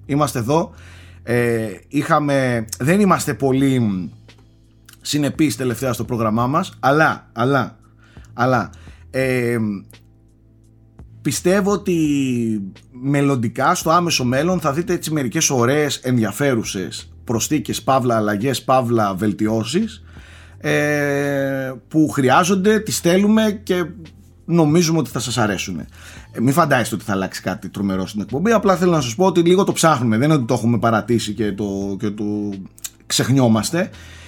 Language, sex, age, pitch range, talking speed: Greek, male, 30-49, 110-165 Hz, 125 wpm